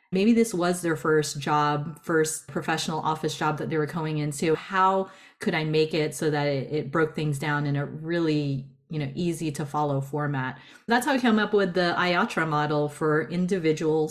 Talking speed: 200 wpm